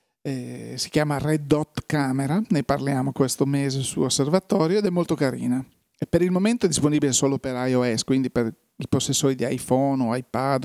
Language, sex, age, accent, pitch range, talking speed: Italian, male, 40-59, native, 135-155 Hz, 185 wpm